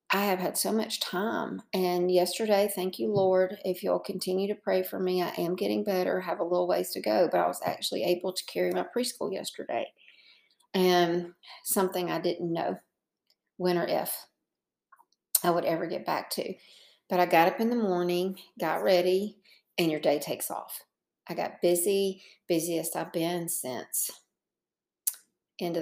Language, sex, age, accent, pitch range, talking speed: English, female, 40-59, American, 165-190 Hz, 170 wpm